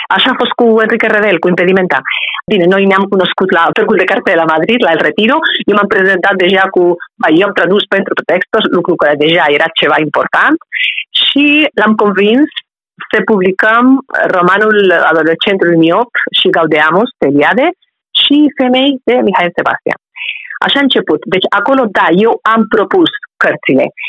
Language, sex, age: Romanian, female, 40-59